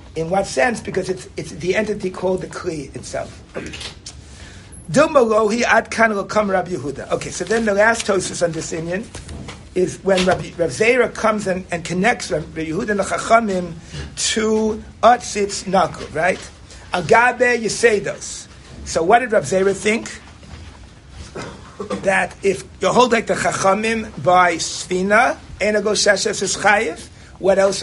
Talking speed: 125 wpm